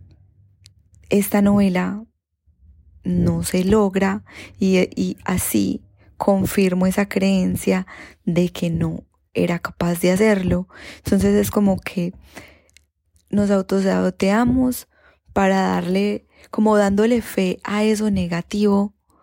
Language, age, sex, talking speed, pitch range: Spanish, 10-29, female, 100 wpm, 170-200 Hz